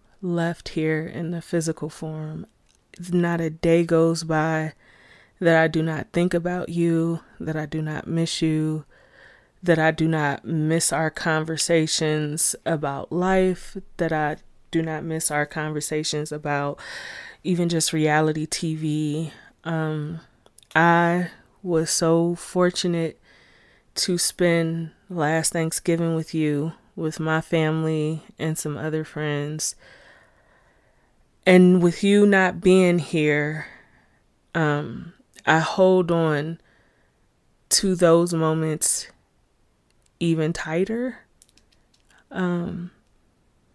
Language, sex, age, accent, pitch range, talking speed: English, female, 20-39, American, 155-175 Hz, 110 wpm